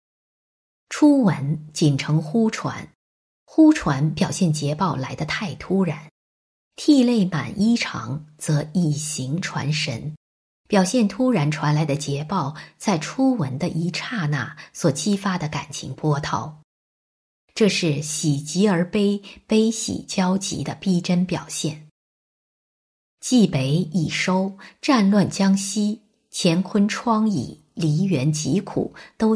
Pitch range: 155-205 Hz